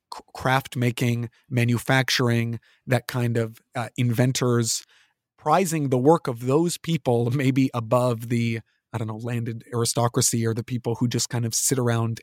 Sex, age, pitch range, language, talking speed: male, 30-49, 120-155 Hz, English, 150 wpm